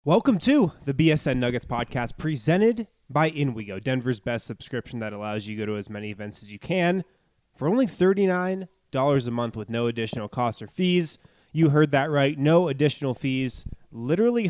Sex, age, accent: male, 20-39, American